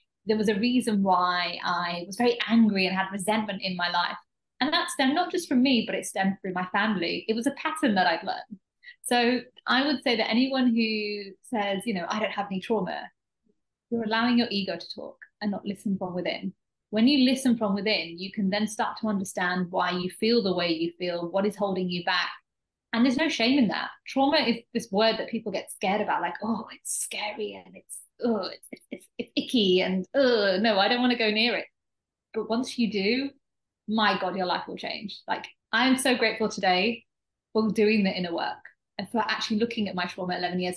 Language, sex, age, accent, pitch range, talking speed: English, female, 20-39, British, 190-245 Hz, 220 wpm